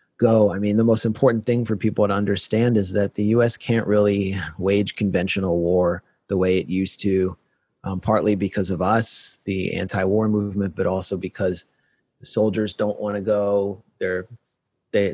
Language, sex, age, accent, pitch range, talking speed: English, male, 30-49, American, 95-110 Hz, 175 wpm